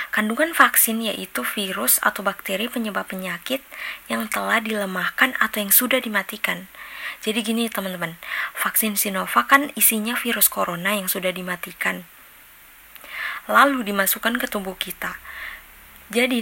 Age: 20-39